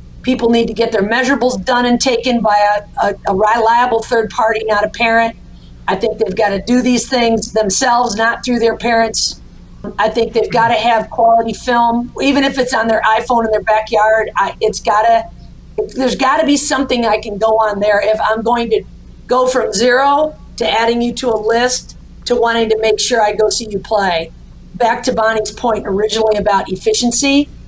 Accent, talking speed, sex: American, 195 wpm, female